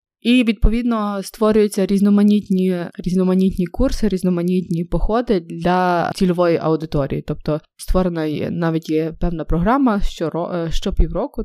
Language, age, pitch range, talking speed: Ukrainian, 20-39, 160-200 Hz, 110 wpm